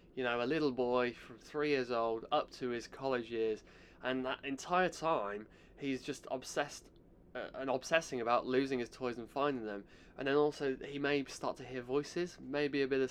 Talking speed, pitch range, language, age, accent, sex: 200 wpm, 120-165 Hz, English, 20-39, British, male